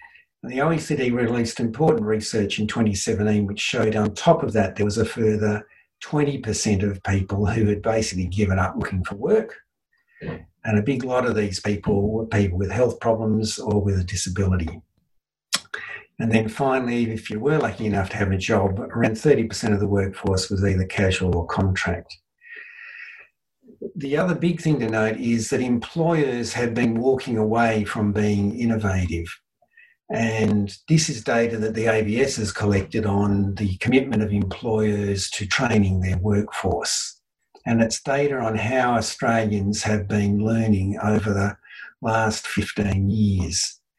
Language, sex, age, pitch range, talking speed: English, male, 60-79, 105-125 Hz, 155 wpm